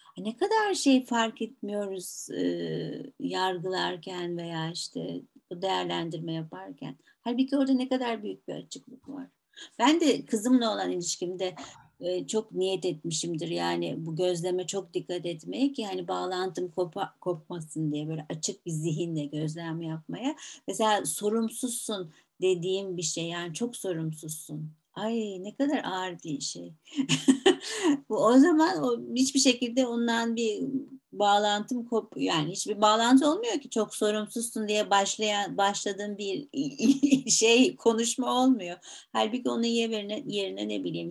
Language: Turkish